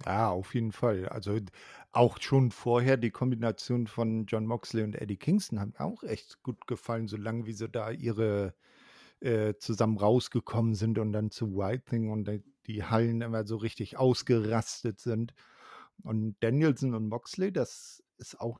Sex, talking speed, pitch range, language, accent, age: male, 170 wpm, 110-140 Hz, German, German, 50-69